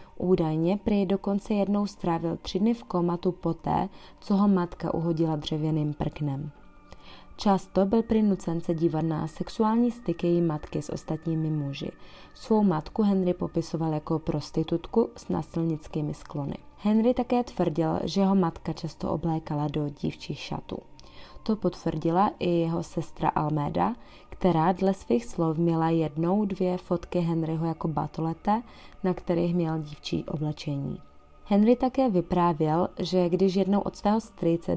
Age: 20-39